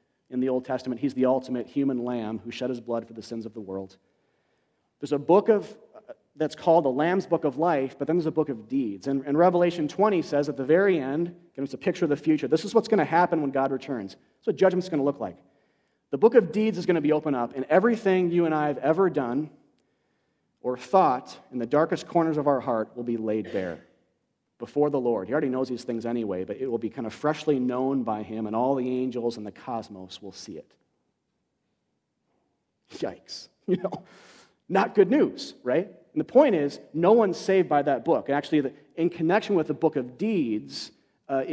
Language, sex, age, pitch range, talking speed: English, male, 40-59, 125-170 Hz, 225 wpm